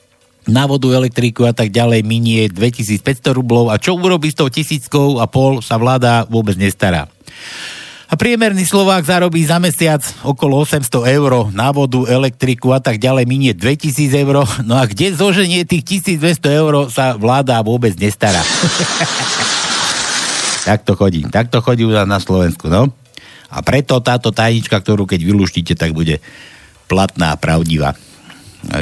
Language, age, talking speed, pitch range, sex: Slovak, 60-79, 150 wpm, 90-130 Hz, male